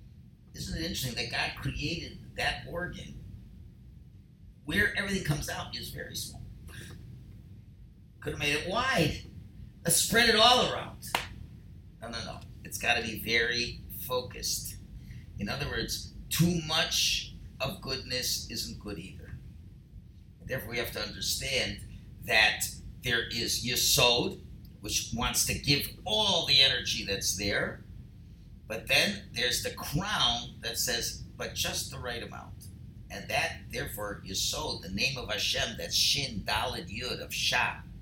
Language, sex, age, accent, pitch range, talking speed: English, male, 50-69, American, 100-125 Hz, 140 wpm